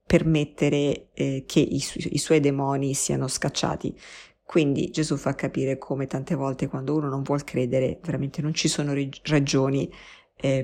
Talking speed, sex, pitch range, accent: 150 wpm, female, 145-175 Hz, native